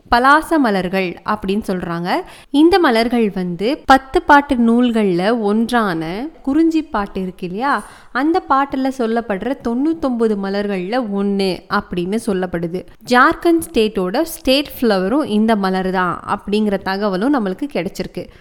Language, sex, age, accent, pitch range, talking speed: Tamil, female, 20-39, native, 195-280 Hz, 110 wpm